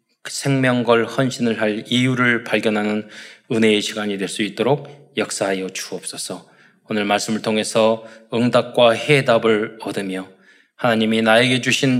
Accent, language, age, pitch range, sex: native, Korean, 20-39, 105-140 Hz, male